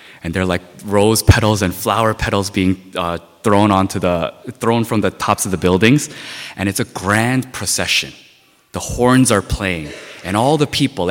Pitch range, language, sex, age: 95-125 Hz, Korean, male, 20-39